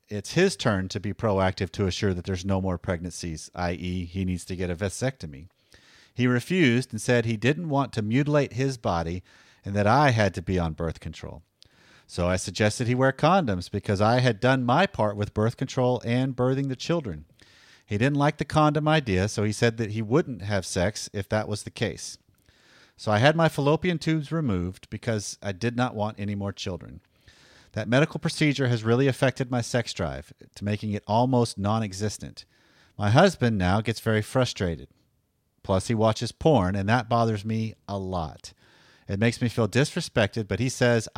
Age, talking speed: 40-59, 190 wpm